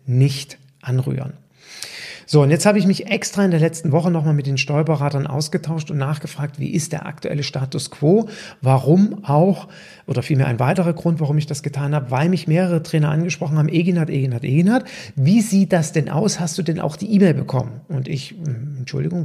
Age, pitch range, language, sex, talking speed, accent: 40-59, 145-180 Hz, German, male, 195 wpm, German